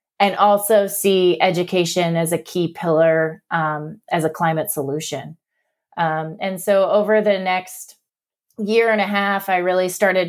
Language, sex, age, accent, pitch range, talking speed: English, female, 30-49, American, 165-195 Hz, 150 wpm